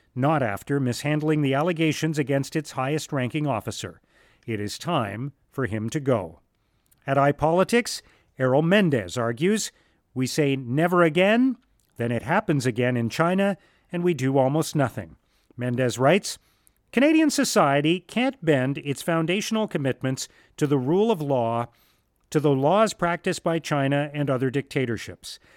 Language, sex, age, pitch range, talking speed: English, male, 40-59, 125-175 Hz, 140 wpm